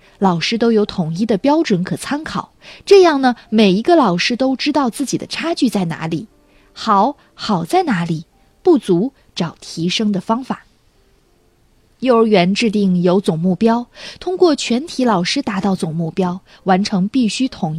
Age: 20-39